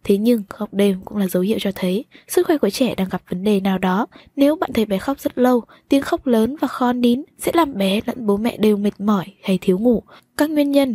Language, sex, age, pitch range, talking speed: Vietnamese, female, 10-29, 195-250 Hz, 265 wpm